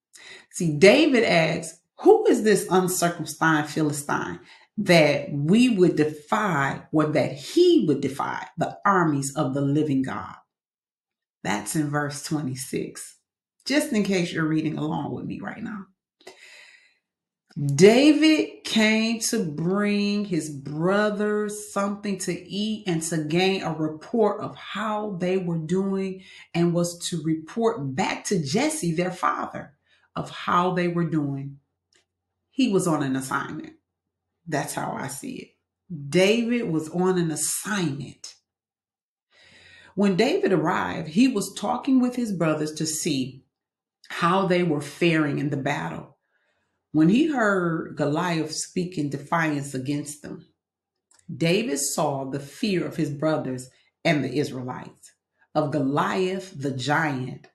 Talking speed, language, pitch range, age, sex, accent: 130 wpm, English, 150-200 Hz, 40-59, female, American